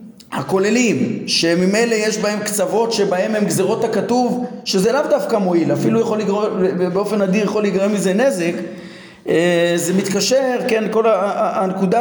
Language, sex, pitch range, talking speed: Hebrew, male, 175-220 Hz, 135 wpm